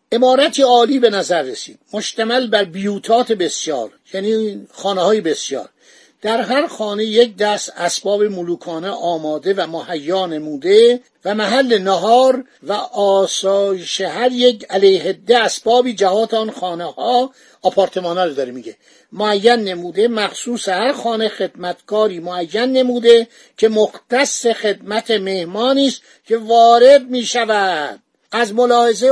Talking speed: 120 wpm